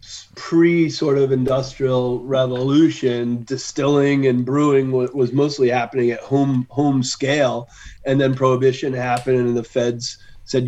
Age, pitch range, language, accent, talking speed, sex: 30-49, 120-135 Hz, English, American, 130 wpm, male